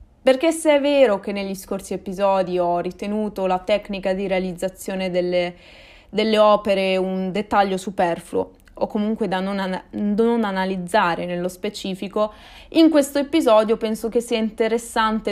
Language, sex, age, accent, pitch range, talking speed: Italian, female, 20-39, native, 190-245 Hz, 135 wpm